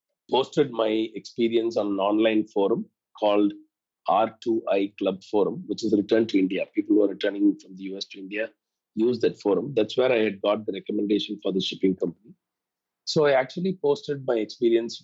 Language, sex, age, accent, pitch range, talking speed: English, male, 40-59, Indian, 105-165 Hz, 185 wpm